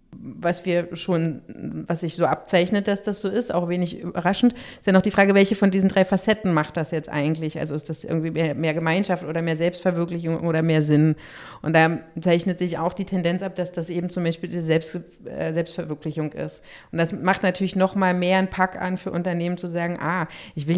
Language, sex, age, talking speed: German, female, 30-49, 215 wpm